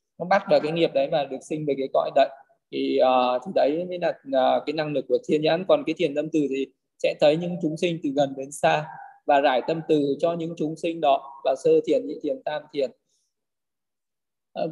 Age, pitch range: 20-39, 150-190 Hz